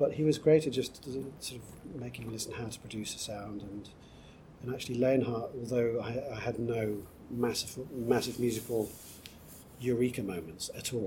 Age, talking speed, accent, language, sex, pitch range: 40-59, 180 wpm, British, English, male, 100-125 Hz